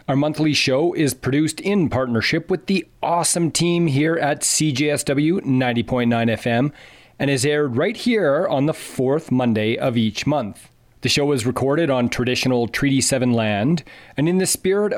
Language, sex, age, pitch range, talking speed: English, male, 40-59, 125-155 Hz, 165 wpm